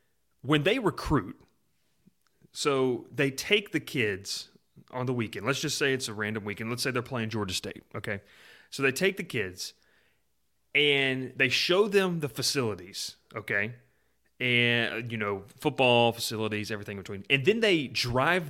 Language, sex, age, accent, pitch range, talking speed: English, male, 30-49, American, 110-135 Hz, 160 wpm